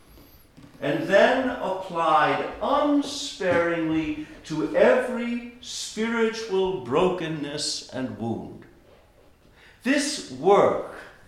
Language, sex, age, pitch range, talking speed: English, male, 60-79, 125-210 Hz, 65 wpm